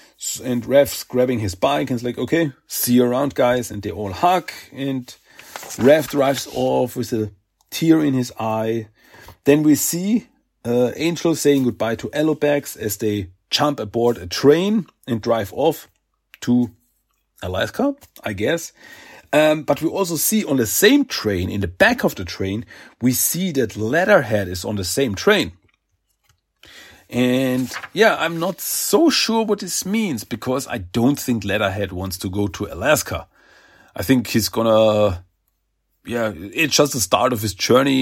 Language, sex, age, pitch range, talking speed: German, male, 40-59, 105-145 Hz, 165 wpm